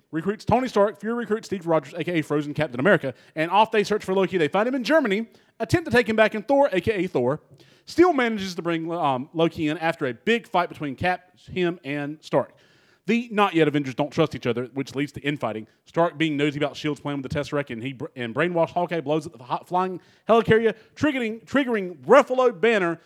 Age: 30-49